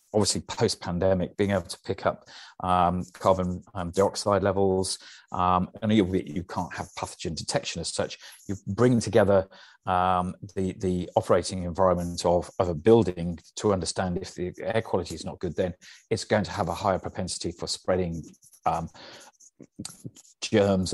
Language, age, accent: English, 40-59, British